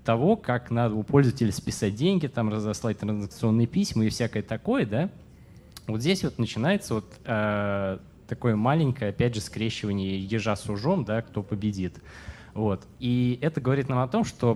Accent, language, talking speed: native, Russian, 165 wpm